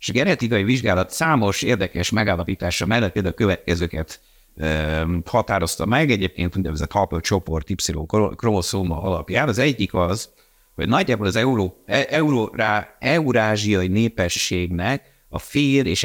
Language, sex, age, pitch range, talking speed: Hungarian, male, 60-79, 90-115 Hz, 115 wpm